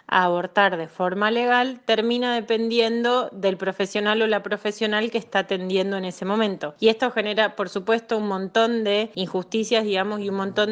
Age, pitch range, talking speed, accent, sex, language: 20-39, 190-225 Hz, 175 wpm, Argentinian, female, Spanish